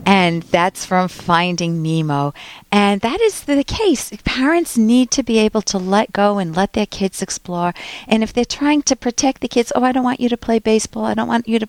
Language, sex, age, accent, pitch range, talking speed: English, female, 50-69, American, 195-250 Hz, 225 wpm